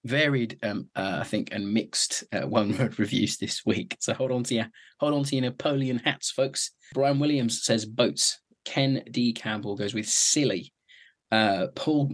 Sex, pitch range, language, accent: male, 115-140 Hz, English, British